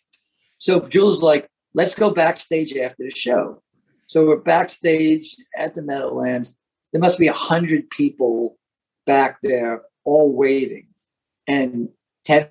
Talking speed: 130 wpm